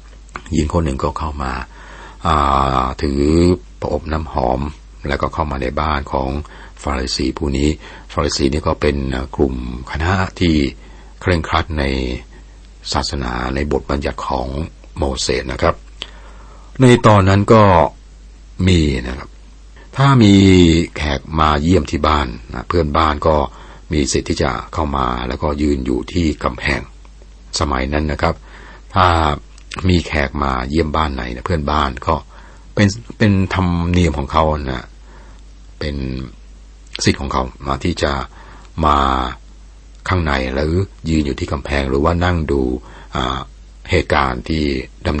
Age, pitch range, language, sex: 60-79, 65-85 Hz, Thai, male